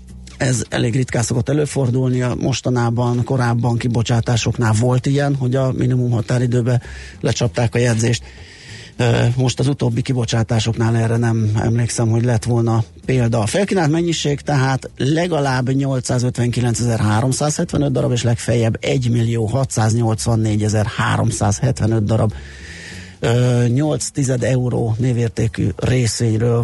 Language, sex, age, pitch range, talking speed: Hungarian, male, 30-49, 115-130 Hz, 95 wpm